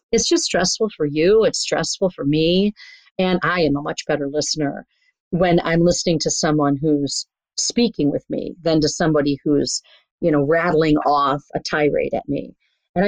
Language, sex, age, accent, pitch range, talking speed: English, female, 40-59, American, 155-205 Hz, 175 wpm